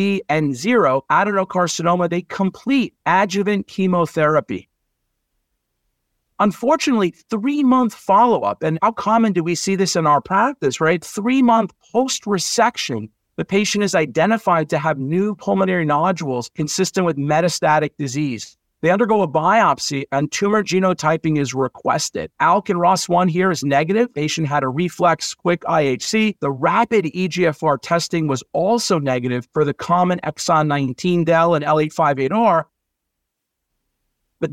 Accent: American